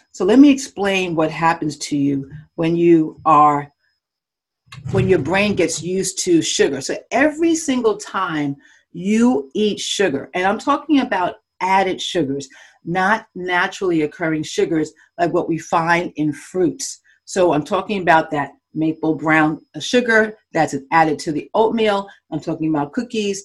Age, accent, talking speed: 40-59, American, 150 wpm